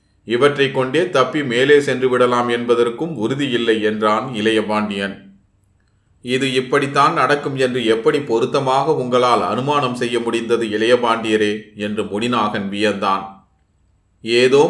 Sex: male